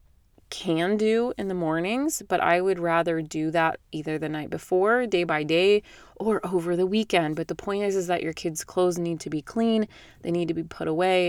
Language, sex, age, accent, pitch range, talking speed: English, female, 30-49, American, 155-185 Hz, 220 wpm